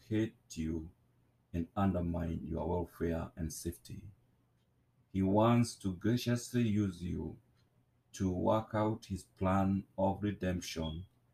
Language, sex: English, male